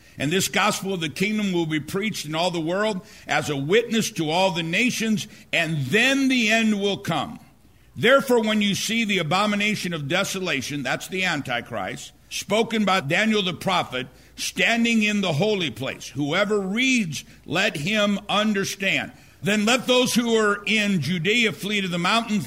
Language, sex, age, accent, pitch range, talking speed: English, male, 60-79, American, 155-205 Hz, 170 wpm